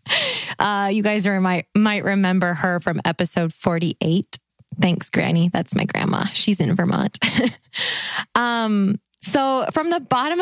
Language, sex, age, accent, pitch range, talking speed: English, female, 10-29, American, 170-200 Hz, 145 wpm